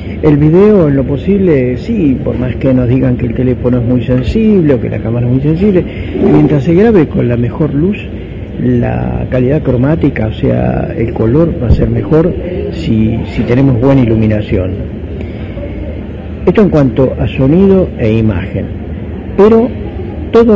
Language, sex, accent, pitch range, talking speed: Spanish, male, Argentinian, 110-165 Hz, 165 wpm